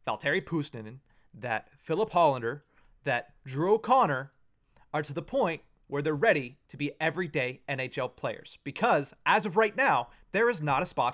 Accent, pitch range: American, 140-195 Hz